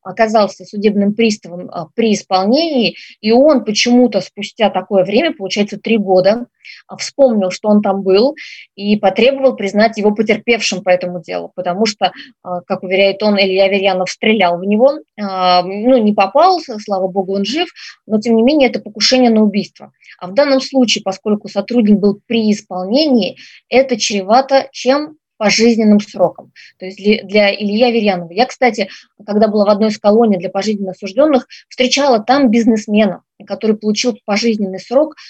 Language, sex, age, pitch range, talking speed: Russian, female, 20-39, 195-240 Hz, 150 wpm